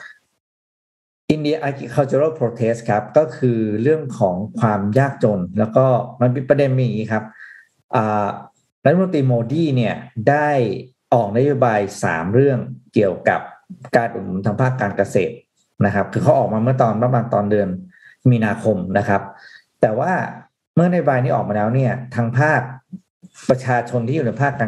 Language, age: Thai, 50-69